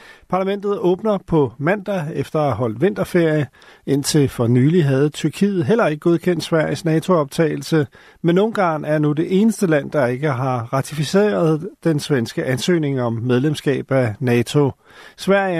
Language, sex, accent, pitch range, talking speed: Danish, male, native, 145-185 Hz, 145 wpm